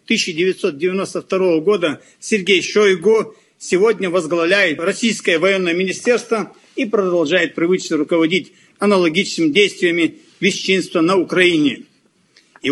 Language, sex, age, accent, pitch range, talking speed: Russian, male, 50-69, native, 185-220 Hz, 90 wpm